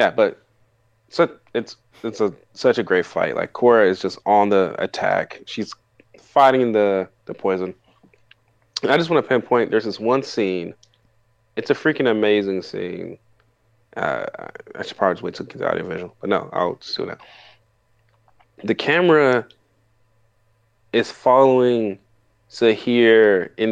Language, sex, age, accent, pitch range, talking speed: English, male, 20-39, American, 105-115 Hz, 150 wpm